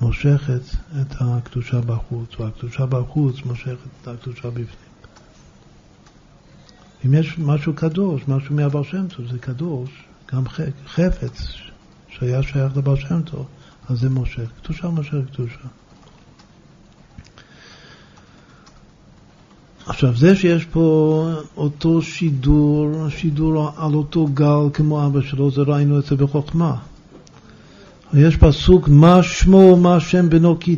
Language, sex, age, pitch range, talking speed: Hebrew, male, 50-69, 125-150 Hz, 105 wpm